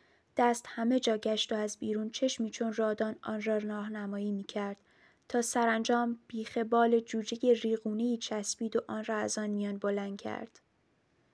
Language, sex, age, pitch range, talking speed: Persian, female, 20-39, 215-235 Hz, 155 wpm